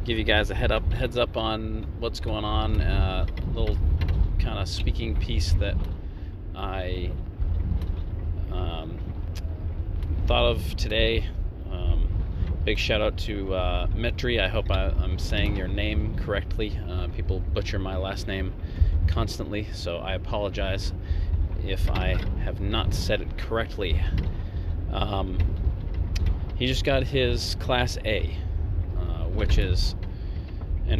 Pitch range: 85-95 Hz